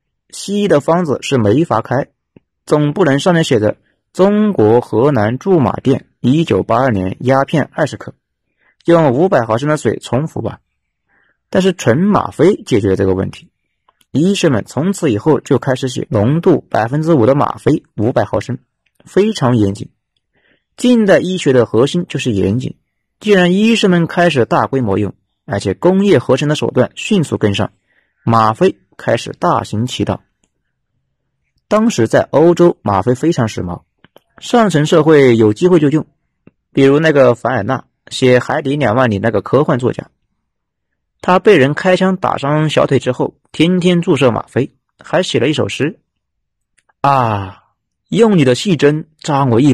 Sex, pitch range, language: male, 115-170 Hz, Chinese